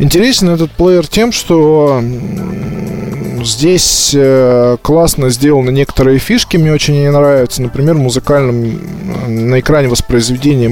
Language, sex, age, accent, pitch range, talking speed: Russian, male, 20-39, native, 125-160 Hz, 105 wpm